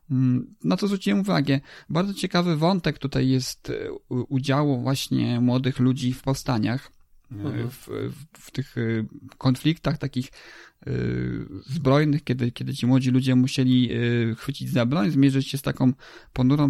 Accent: native